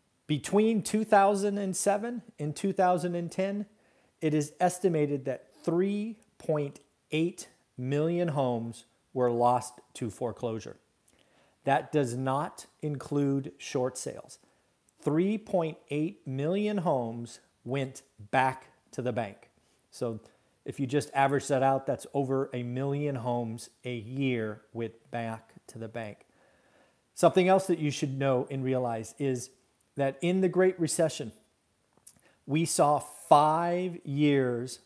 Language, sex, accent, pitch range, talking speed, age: English, male, American, 125-170 Hz, 115 wpm, 40-59